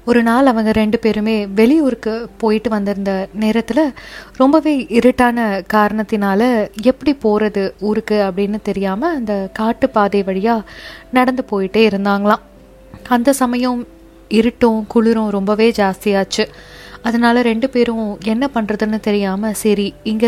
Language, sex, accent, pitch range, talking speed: Tamil, female, native, 210-245 Hz, 110 wpm